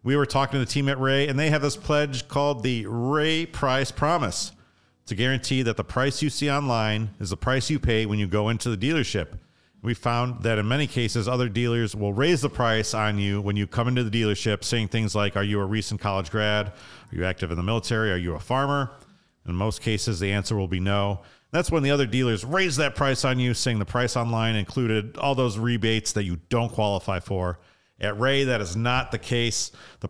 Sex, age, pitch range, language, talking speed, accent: male, 40-59, 105-130 Hz, English, 230 wpm, American